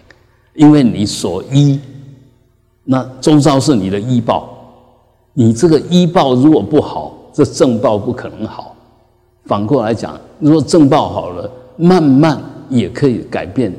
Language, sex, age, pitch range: Chinese, male, 50-69, 110-130 Hz